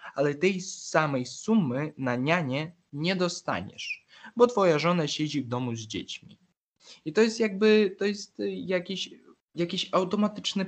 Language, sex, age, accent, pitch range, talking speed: Polish, male, 20-39, native, 140-180 Hz, 140 wpm